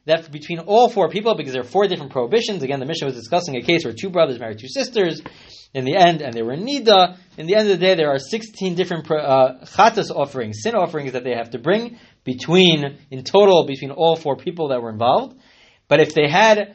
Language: English